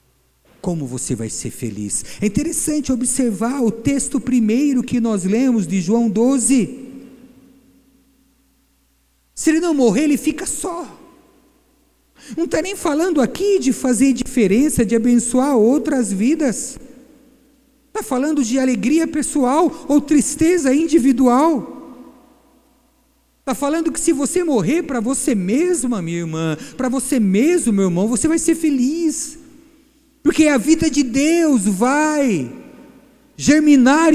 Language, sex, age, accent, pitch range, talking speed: Portuguese, male, 50-69, Brazilian, 220-305 Hz, 125 wpm